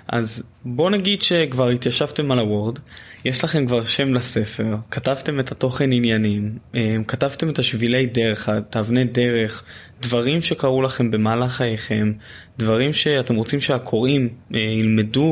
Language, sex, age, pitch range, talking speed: Hebrew, male, 20-39, 110-135 Hz, 130 wpm